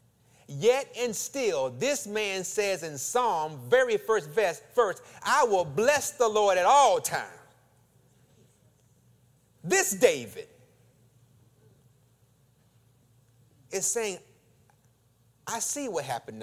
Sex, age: male, 30-49